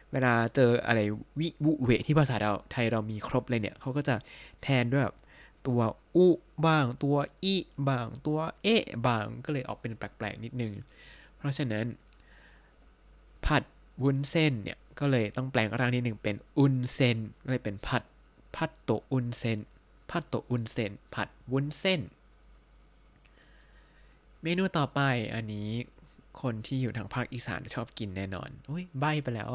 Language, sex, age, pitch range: Thai, male, 20-39, 115-150 Hz